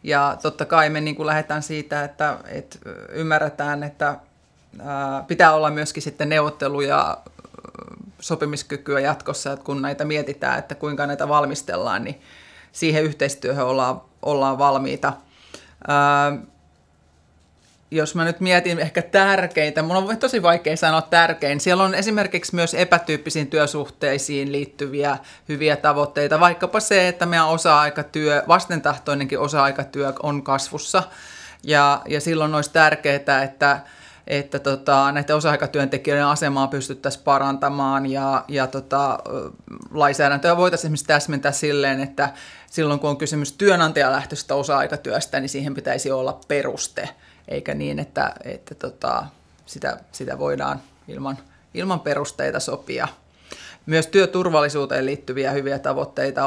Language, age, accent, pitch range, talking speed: Finnish, 30-49, native, 140-155 Hz, 120 wpm